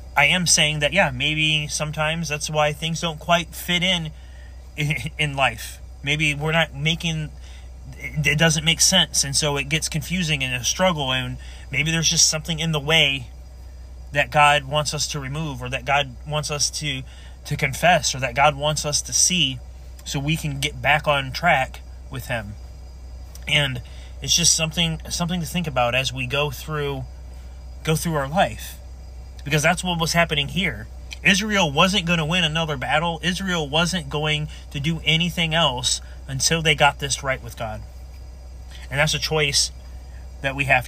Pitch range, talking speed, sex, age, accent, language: 115-155 Hz, 180 wpm, male, 30-49, American, English